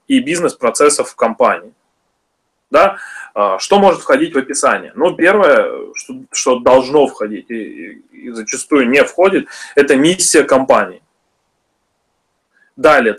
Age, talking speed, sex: 20-39, 105 wpm, male